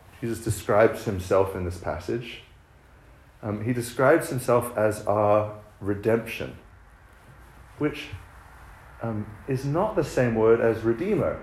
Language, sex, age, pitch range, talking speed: English, male, 40-59, 100-140 Hz, 115 wpm